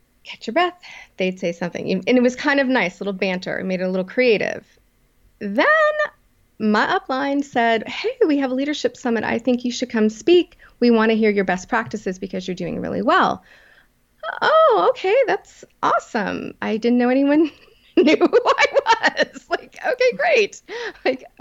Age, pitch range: 30-49, 220-305 Hz